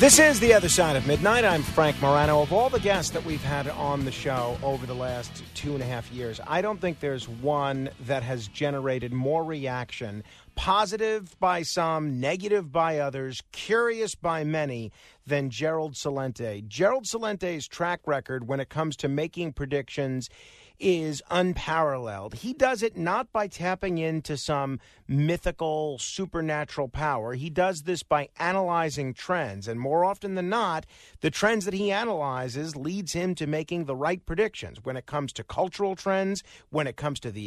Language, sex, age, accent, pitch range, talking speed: English, male, 40-59, American, 135-180 Hz, 170 wpm